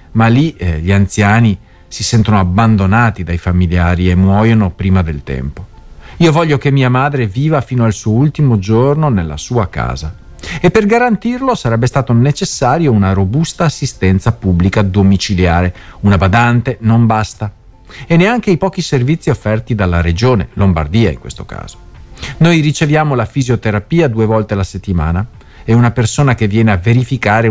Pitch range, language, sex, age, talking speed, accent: 95-140 Hz, Italian, male, 50-69, 155 wpm, native